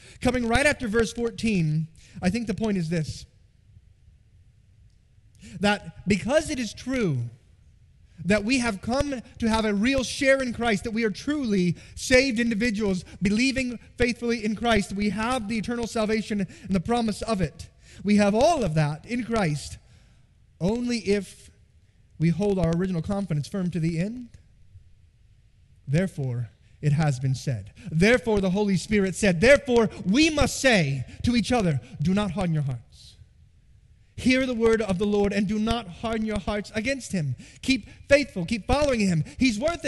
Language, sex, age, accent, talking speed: English, male, 30-49, American, 165 wpm